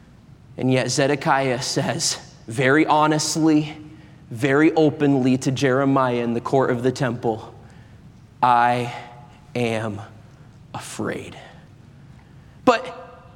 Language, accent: English, American